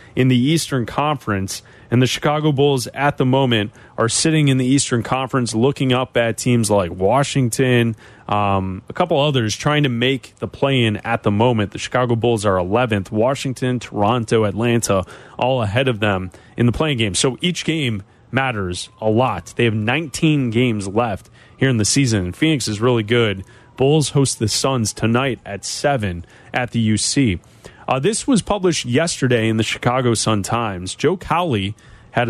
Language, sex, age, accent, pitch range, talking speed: English, male, 30-49, American, 110-145 Hz, 175 wpm